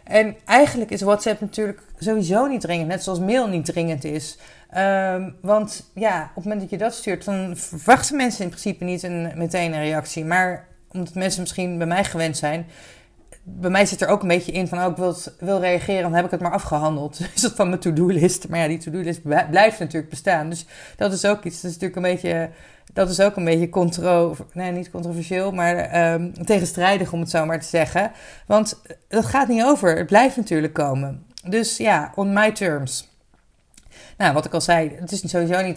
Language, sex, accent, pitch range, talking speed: Dutch, female, Dutch, 155-190 Hz, 205 wpm